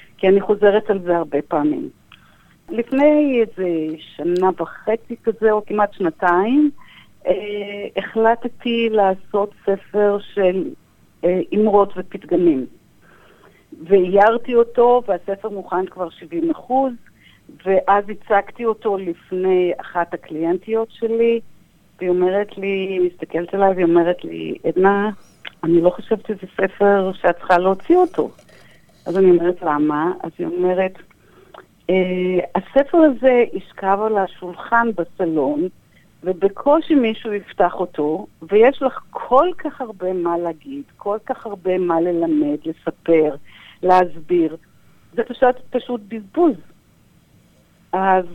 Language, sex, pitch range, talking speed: English, female, 175-225 Hz, 110 wpm